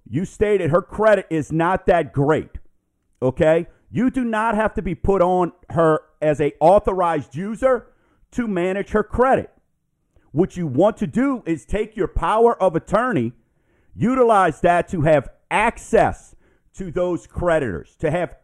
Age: 50-69